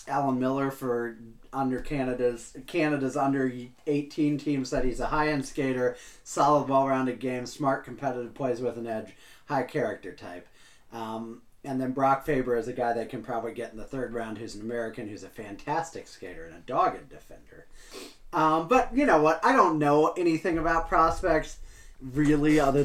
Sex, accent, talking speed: male, American, 175 wpm